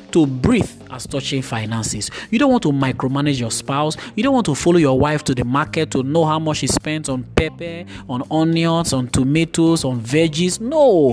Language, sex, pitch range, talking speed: English, male, 130-175 Hz, 200 wpm